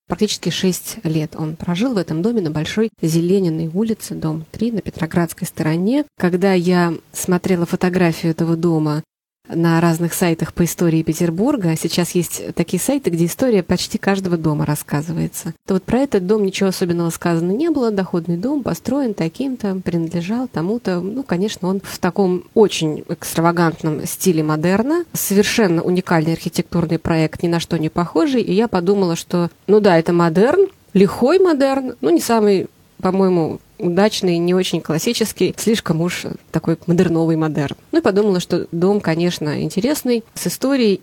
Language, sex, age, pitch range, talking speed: Russian, female, 20-39, 165-205 Hz, 155 wpm